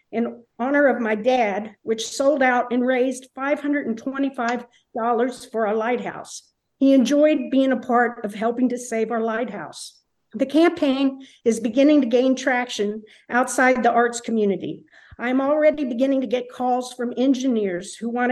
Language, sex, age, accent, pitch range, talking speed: English, female, 50-69, American, 225-270 Hz, 150 wpm